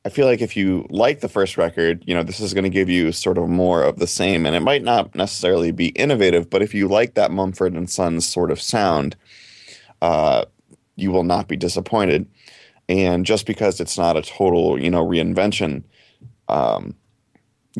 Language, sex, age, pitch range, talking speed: English, male, 20-39, 85-110 Hz, 195 wpm